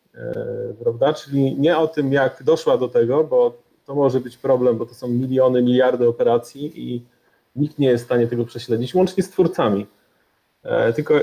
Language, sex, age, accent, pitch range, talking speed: Polish, male, 30-49, native, 125-165 Hz, 165 wpm